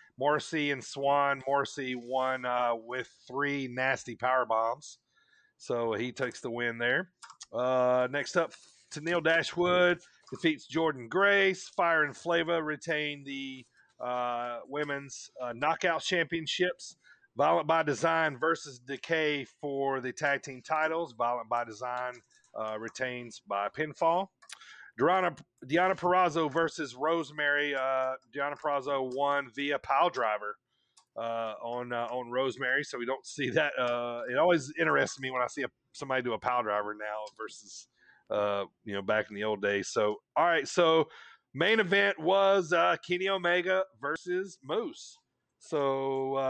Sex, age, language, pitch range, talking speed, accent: male, 30-49, English, 125-165 Hz, 145 wpm, American